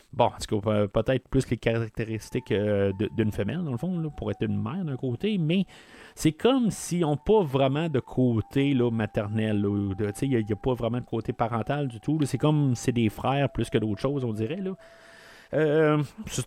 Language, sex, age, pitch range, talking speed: French, male, 30-49, 105-140 Hz, 190 wpm